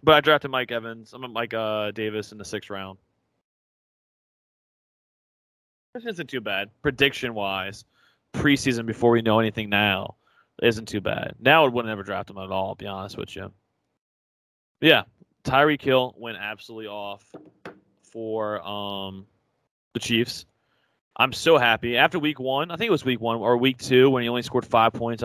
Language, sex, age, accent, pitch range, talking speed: English, male, 20-39, American, 110-140 Hz, 180 wpm